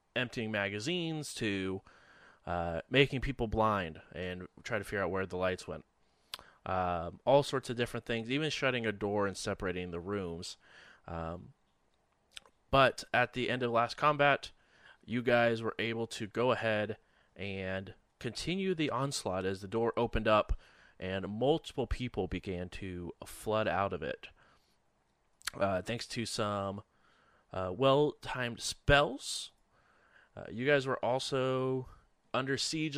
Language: English